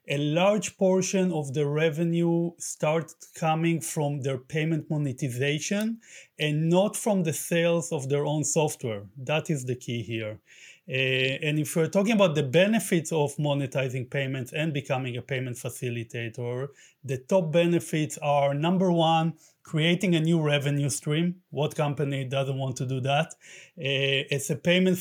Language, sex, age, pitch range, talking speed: English, male, 30-49, 140-170 Hz, 155 wpm